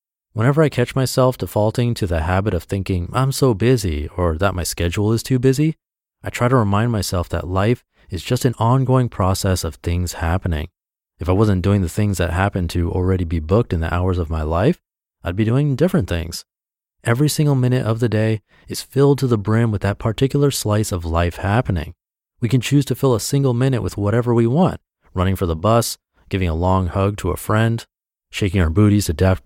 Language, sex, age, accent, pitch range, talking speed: English, male, 30-49, American, 90-120 Hz, 210 wpm